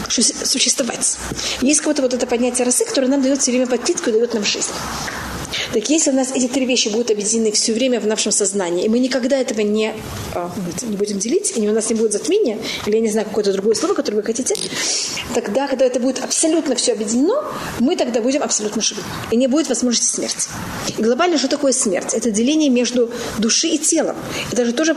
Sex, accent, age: female, native, 30-49